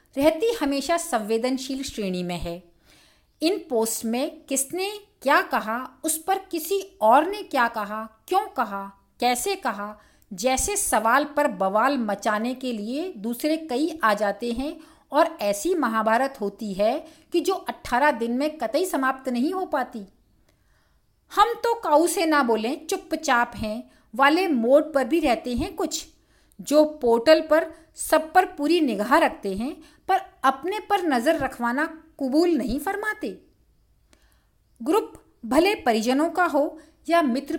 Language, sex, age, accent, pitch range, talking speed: Hindi, female, 50-69, native, 235-330 Hz, 140 wpm